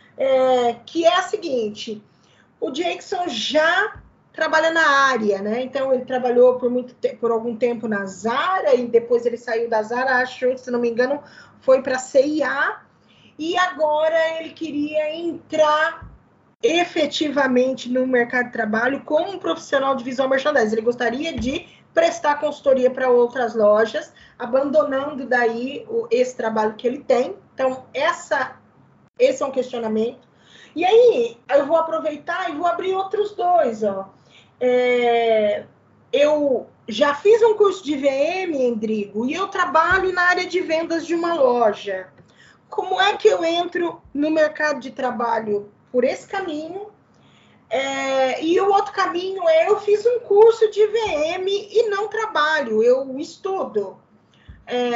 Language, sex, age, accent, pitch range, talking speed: Portuguese, female, 20-39, Brazilian, 245-345 Hz, 150 wpm